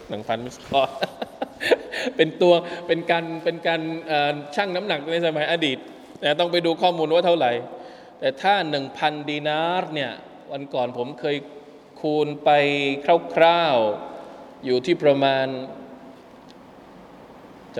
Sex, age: male, 20-39